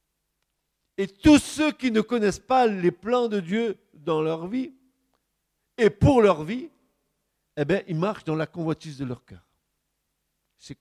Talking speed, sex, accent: 160 wpm, male, French